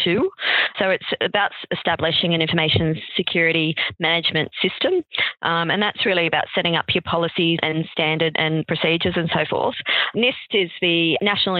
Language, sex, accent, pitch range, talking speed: English, female, Australian, 155-180 Hz, 150 wpm